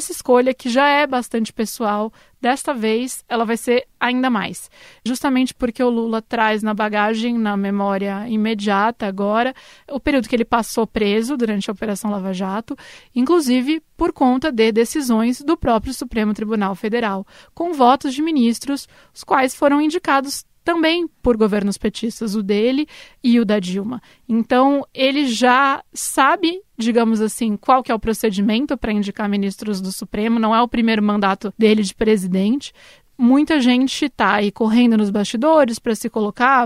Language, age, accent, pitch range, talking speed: Portuguese, 20-39, Brazilian, 220-260 Hz, 160 wpm